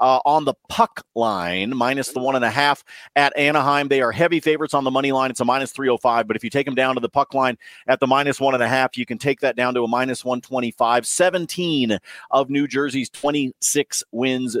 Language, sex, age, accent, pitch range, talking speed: English, male, 40-59, American, 120-150 Hz, 235 wpm